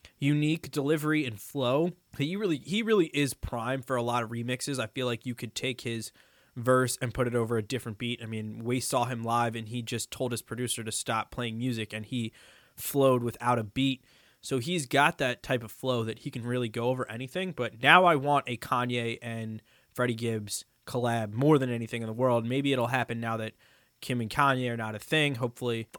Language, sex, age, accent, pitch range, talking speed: English, male, 20-39, American, 120-140 Hz, 220 wpm